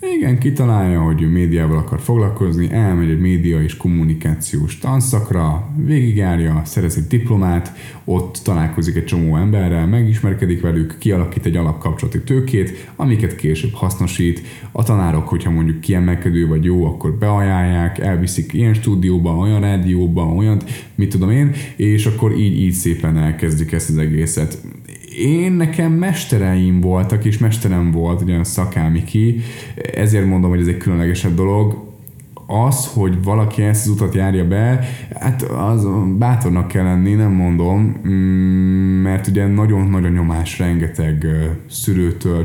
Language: Hungarian